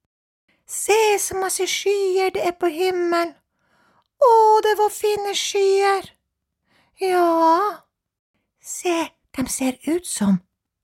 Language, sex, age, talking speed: Danish, female, 40-59, 100 wpm